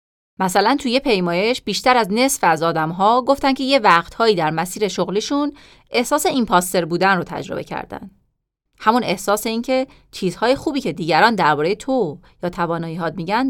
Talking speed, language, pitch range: 155 wpm, Persian, 175-265 Hz